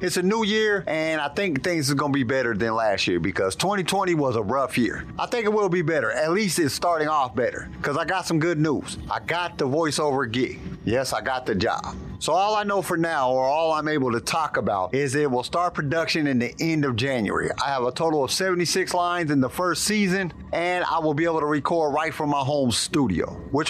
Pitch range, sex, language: 140-175 Hz, male, English